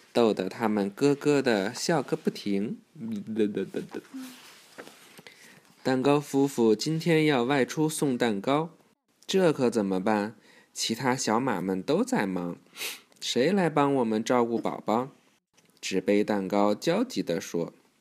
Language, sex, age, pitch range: Chinese, male, 20-39, 110-155 Hz